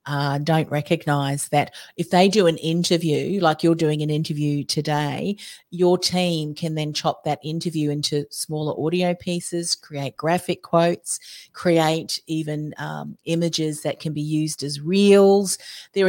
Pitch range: 150-180 Hz